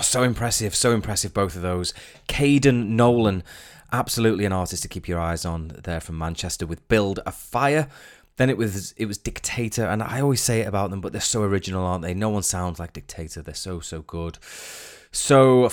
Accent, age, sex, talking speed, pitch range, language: British, 20-39, male, 200 wpm, 85-105 Hz, English